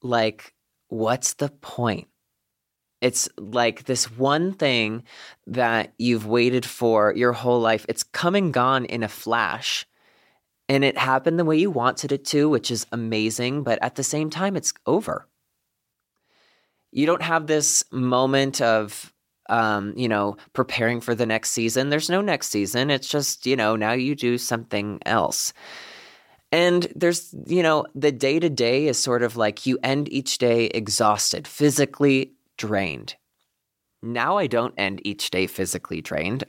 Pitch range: 115-145 Hz